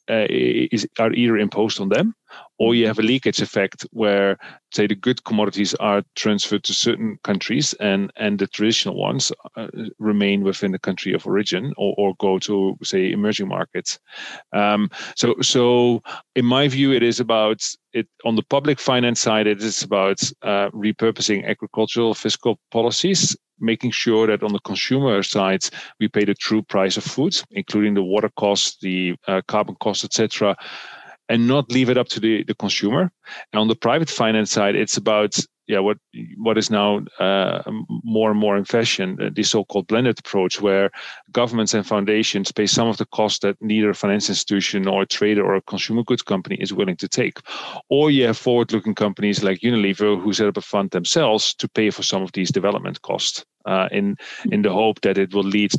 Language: English